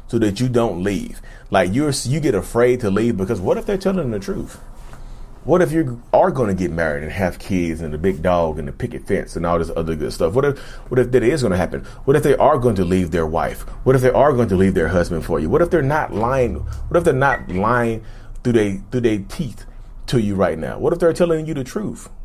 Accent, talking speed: American, 265 wpm